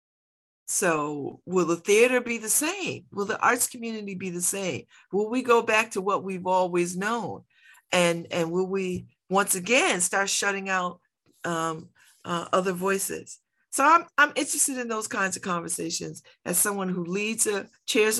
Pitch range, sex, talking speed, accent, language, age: 165-200 Hz, female, 170 wpm, American, English, 50-69